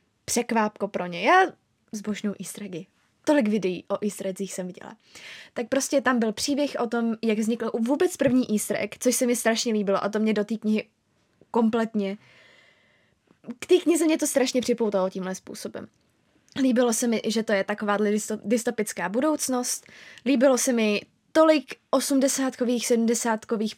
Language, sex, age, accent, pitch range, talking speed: Czech, female, 20-39, native, 215-275 Hz, 150 wpm